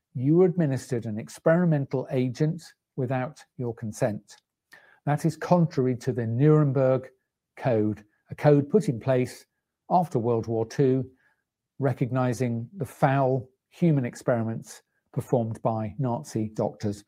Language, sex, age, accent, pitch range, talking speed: English, male, 50-69, British, 120-155 Hz, 115 wpm